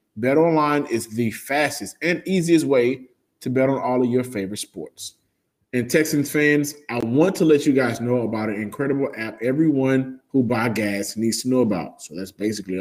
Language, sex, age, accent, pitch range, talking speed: English, male, 20-39, American, 120-155 Hz, 190 wpm